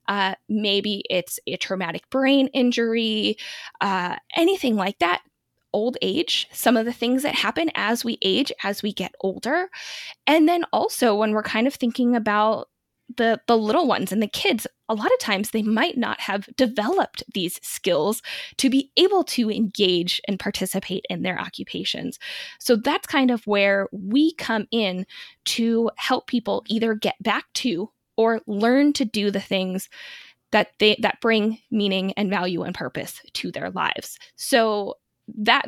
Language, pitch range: English, 195-250 Hz